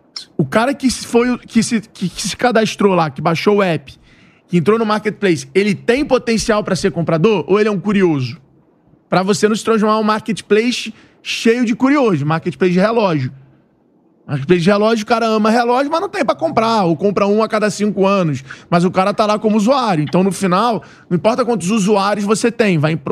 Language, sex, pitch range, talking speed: Portuguese, male, 185-235 Hz, 200 wpm